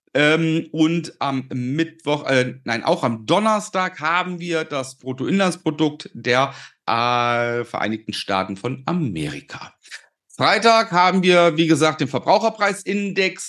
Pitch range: 125-180 Hz